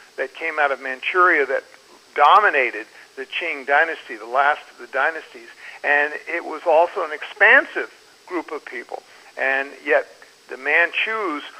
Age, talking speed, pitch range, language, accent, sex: 50-69, 145 wpm, 140-195 Hz, English, American, male